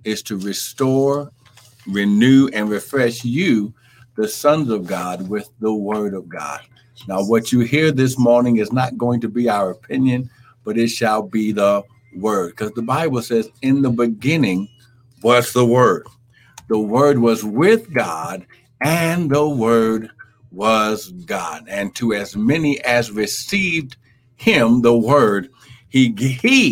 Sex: male